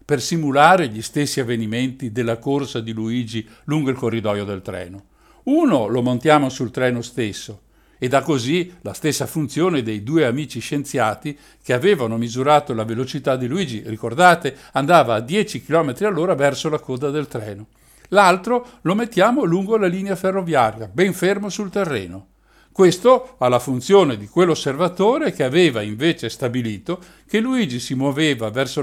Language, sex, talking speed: Italian, male, 155 wpm